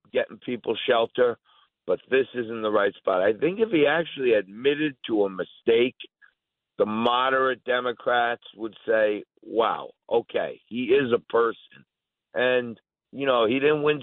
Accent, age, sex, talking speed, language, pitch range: American, 50-69, male, 150 wpm, English, 105-125 Hz